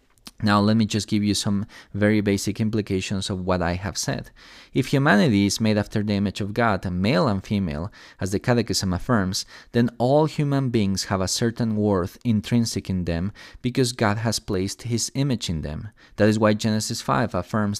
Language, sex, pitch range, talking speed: English, male, 100-120 Hz, 190 wpm